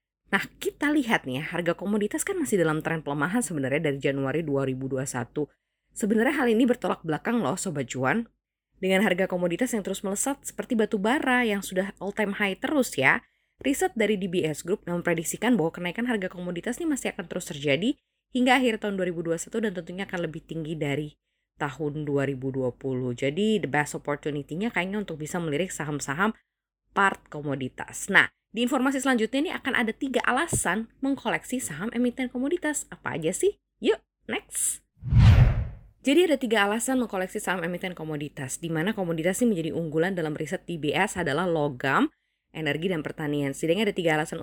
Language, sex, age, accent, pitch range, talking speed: Indonesian, female, 20-39, native, 155-225 Hz, 165 wpm